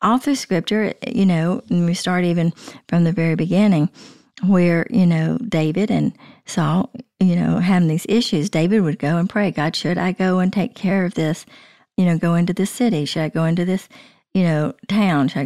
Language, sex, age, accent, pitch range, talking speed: English, female, 50-69, American, 170-215 Hz, 205 wpm